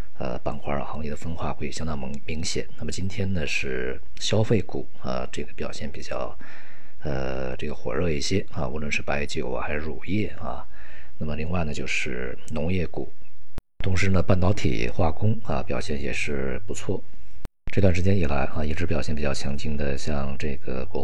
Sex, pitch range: male, 70-90 Hz